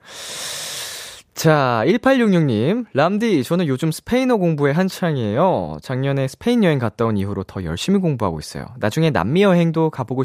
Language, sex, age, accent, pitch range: Korean, male, 20-39, native, 105-175 Hz